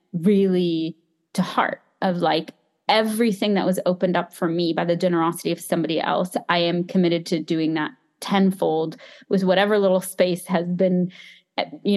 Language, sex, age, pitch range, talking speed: English, female, 20-39, 170-200 Hz, 160 wpm